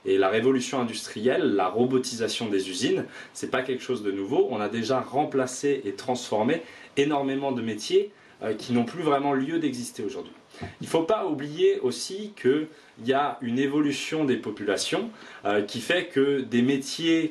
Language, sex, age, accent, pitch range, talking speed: French, male, 20-39, French, 120-145 Hz, 170 wpm